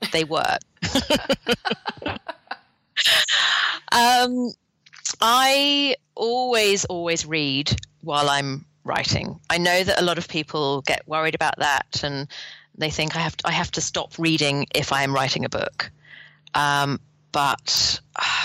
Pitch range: 145-195 Hz